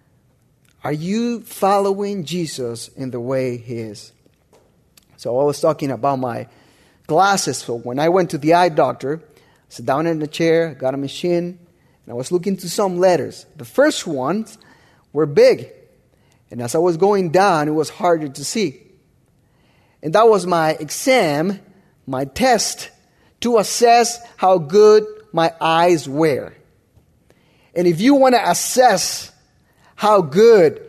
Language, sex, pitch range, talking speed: English, male, 150-210 Hz, 150 wpm